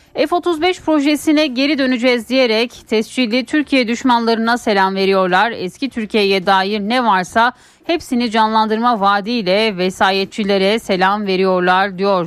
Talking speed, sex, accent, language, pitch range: 110 wpm, female, native, Turkish, 195-255 Hz